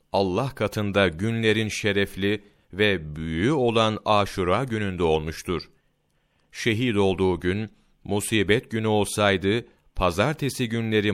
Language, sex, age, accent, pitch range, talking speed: Turkish, male, 40-59, native, 85-110 Hz, 95 wpm